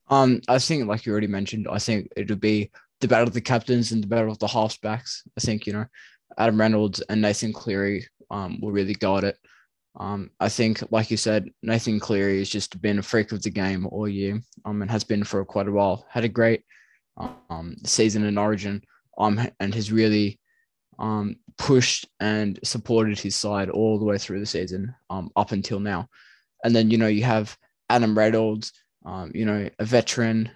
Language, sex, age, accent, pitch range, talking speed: English, male, 20-39, Australian, 105-115 Hz, 200 wpm